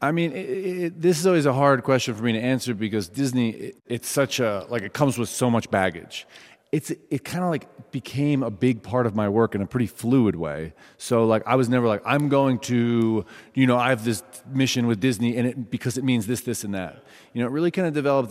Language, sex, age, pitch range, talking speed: English, male, 30-49, 105-130 Hz, 255 wpm